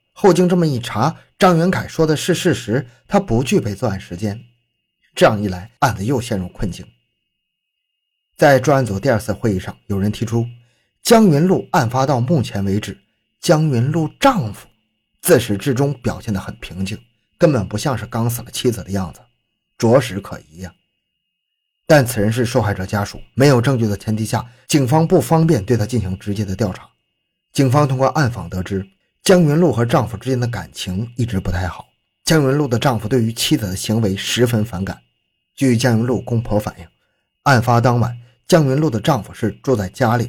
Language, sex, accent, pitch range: Chinese, male, native, 100-145 Hz